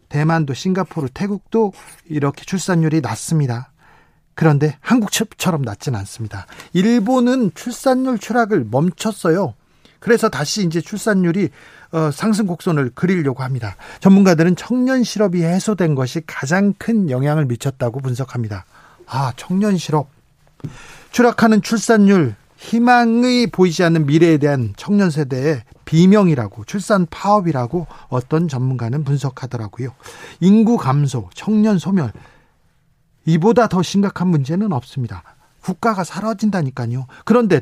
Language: Korean